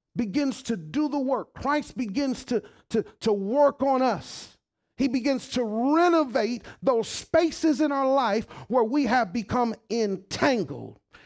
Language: English